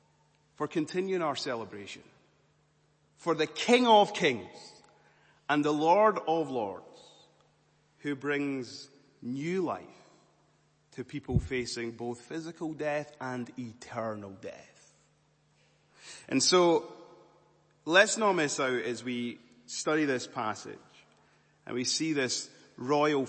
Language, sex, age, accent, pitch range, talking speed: English, male, 30-49, British, 115-160 Hz, 110 wpm